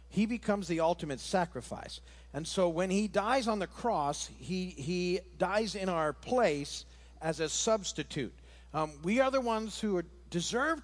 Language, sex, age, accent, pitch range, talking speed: English, male, 50-69, American, 150-210 Hz, 165 wpm